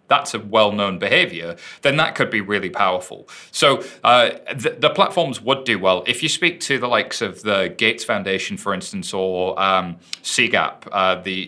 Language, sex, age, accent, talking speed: English, male, 30-49, British, 185 wpm